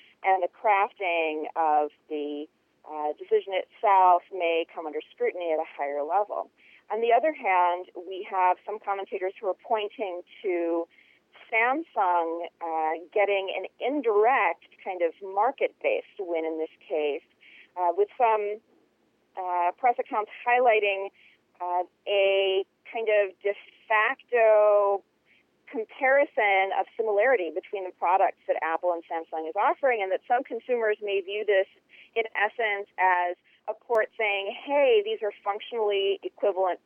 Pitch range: 175-235 Hz